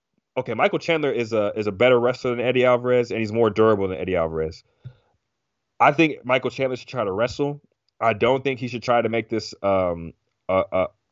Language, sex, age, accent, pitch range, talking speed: English, male, 30-49, American, 105-125 Hz, 210 wpm